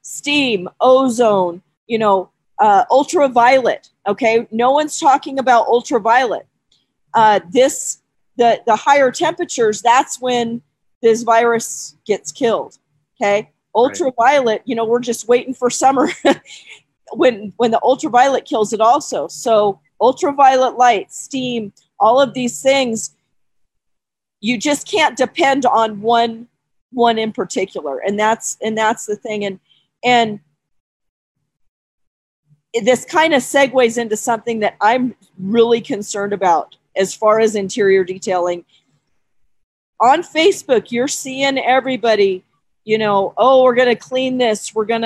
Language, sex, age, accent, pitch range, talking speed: English, female, 40-59, American, 215-260 Hz, 130 wpm